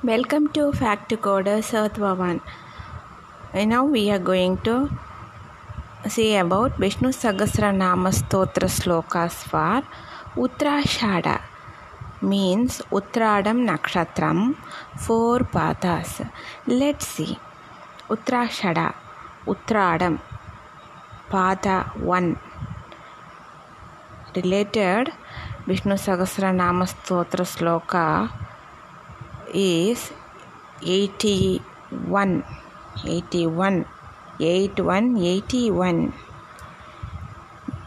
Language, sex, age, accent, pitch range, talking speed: Tamil, female, 20-39, native, 185-235 Hz, 55 wpm